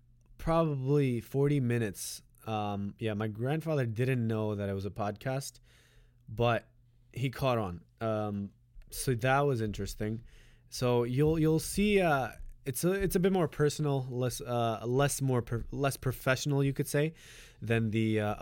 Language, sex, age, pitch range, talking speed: English, male, 20-39, 110-130 Hz, 155 wpm